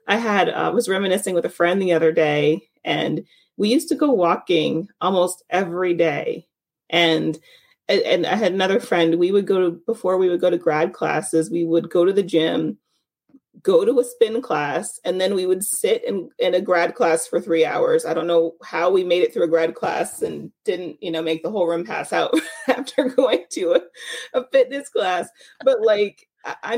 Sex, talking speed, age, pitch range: female, 205 wpm, 30-49, 165-245 Hz